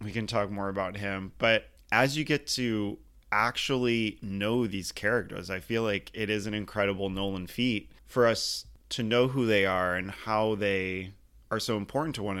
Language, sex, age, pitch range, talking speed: English, male, 20-39, 100-115 Hz, 190 wpm